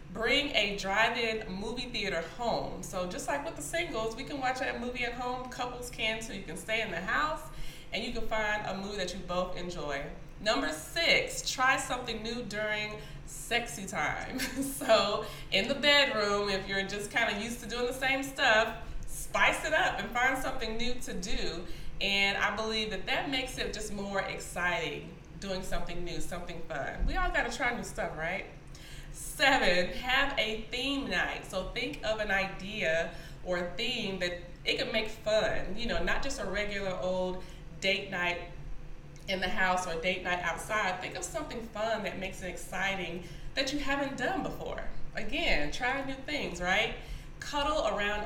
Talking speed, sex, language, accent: 185 wpm, female, English, American